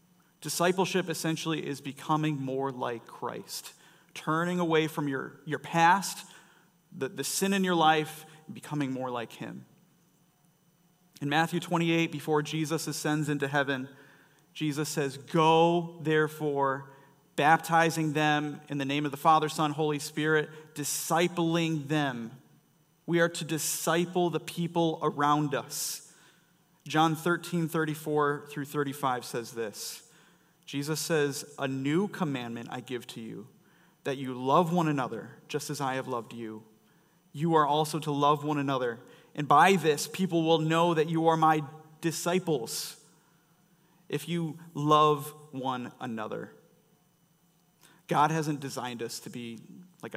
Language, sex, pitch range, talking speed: English, male, 140-170 Hz, 135 wpm